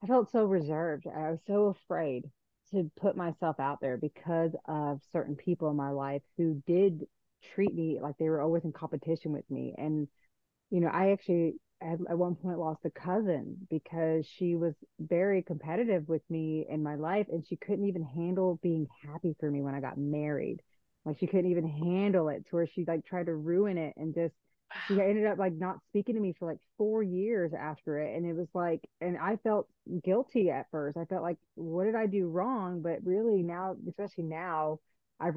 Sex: female